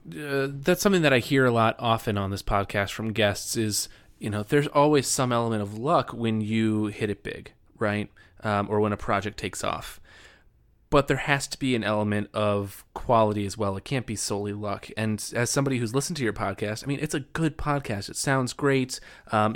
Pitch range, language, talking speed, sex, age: 105-115 Hz, English, 215 wpm, male, 20-39